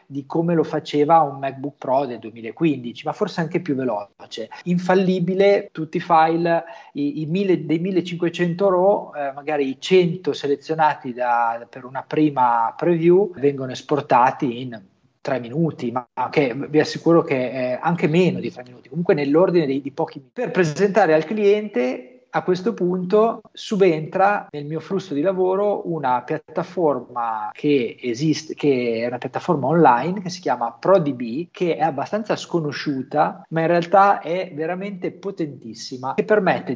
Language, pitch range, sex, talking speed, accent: Italian, 135-180 Hz, male, 155 wpm, native